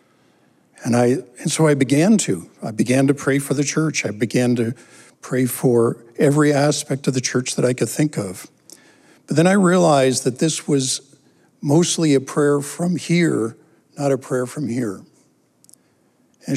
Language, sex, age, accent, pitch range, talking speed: English, male, 60-79, American, 130-155 Hz, 170 wpm